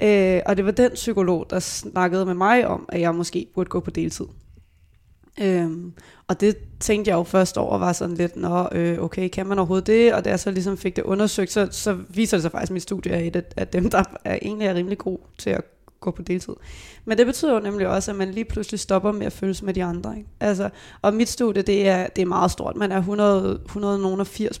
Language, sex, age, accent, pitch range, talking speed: Danish, female, 20-39, native, 175-200 Hz, 240 wpm